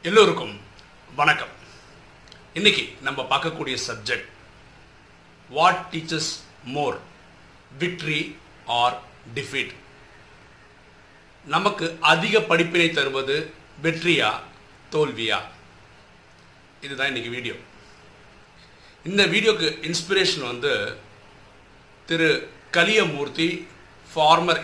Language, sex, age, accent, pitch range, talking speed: Tamil, male, 50-69, native, 140-175 Hz, 70 wpm